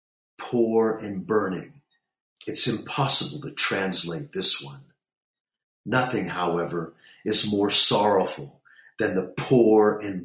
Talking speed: 105 wpm